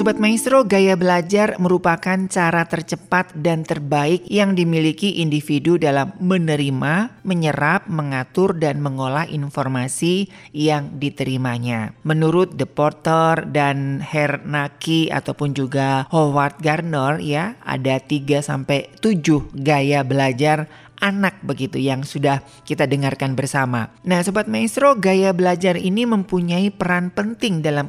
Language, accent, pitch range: Indonesian, native, 135-180 Hz